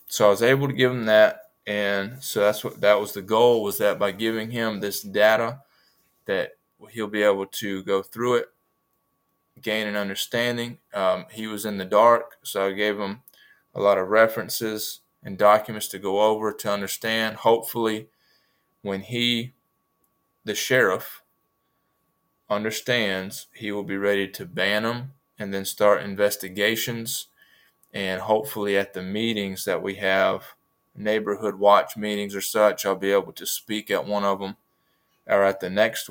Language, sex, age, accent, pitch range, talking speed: English, male, 20-39, American, 100-110 Hz, 165 wpm